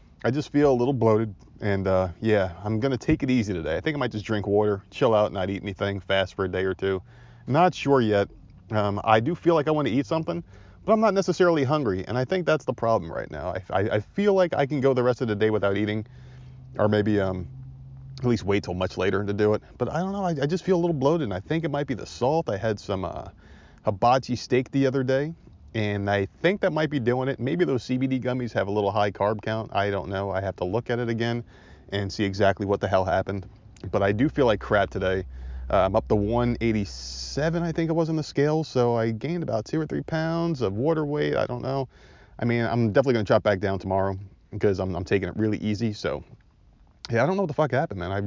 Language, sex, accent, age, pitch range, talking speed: English, male, American, 30-49, 100-140 Hz, 260 wpm